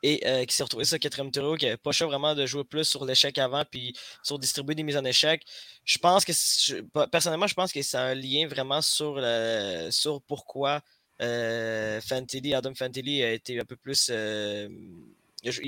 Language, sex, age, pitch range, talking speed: French, male, 20-39, 125-150 Hz, 195 wpm